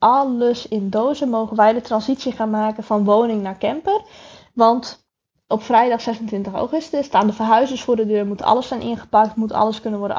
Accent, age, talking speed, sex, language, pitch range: Dutch, 10-29, 190 wpm, female, Dutch, 215-255 Hz